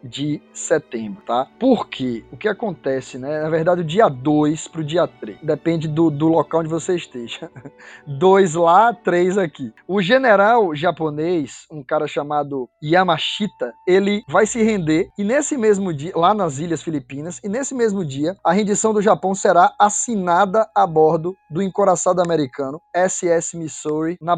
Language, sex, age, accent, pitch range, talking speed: Portuguese, male, 20-39, Brazilian, 155-205 Hz, 160 wpm